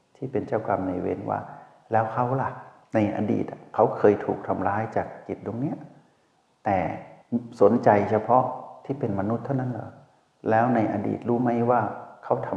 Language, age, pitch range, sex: Thai, 60-79, 95-120 Hz, male